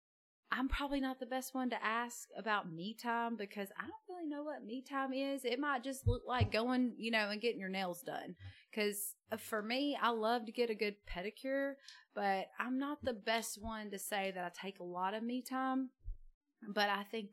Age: 30-49